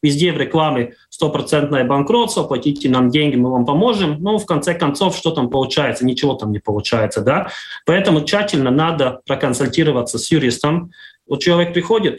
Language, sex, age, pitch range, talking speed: Russian, male, 30-49, 125-160 Hz, 165 wpm